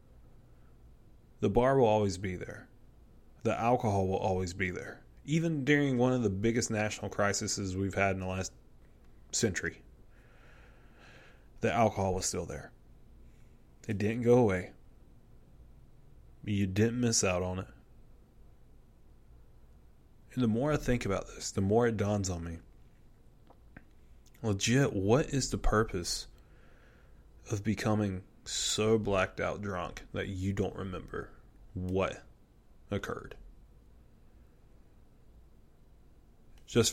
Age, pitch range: 20-39, 95-115 Hz